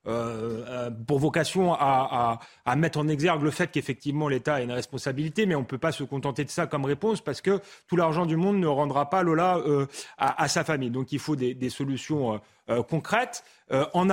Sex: male